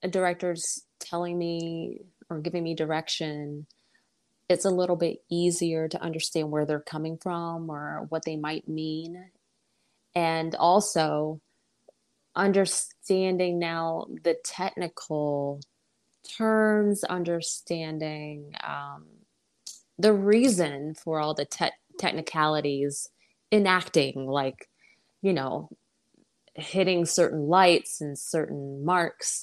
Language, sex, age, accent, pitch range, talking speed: English, female, 20-39, American, 150-180 Hz, 100 wpm